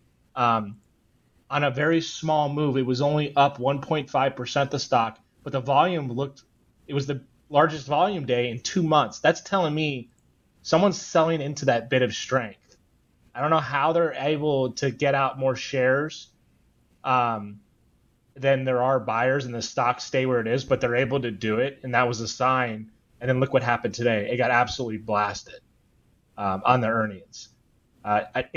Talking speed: 180 wpm